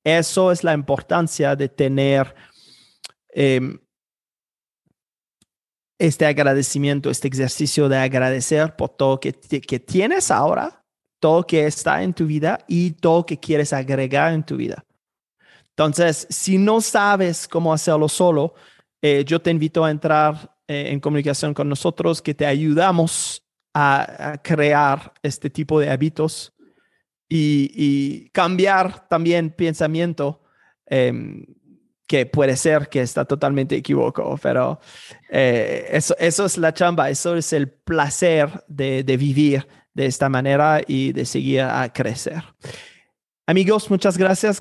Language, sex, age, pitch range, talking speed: Spanish, male, 30-49, 145-175 Hz, 135 wpm